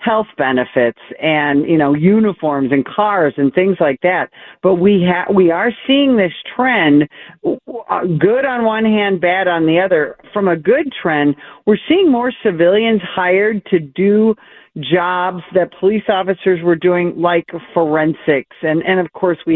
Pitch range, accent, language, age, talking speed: 155-200 Hz, American, English, 50-69, 160 wpm